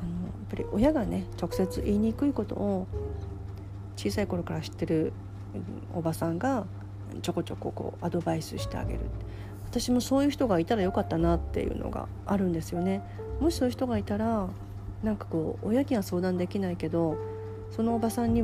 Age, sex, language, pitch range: 40-59, female, Japanese, 95-130 Hz